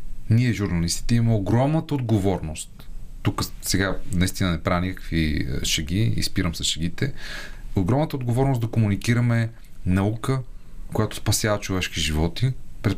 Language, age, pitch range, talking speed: Bulgarian, 30-49, 95-120 Hz, 120 wpm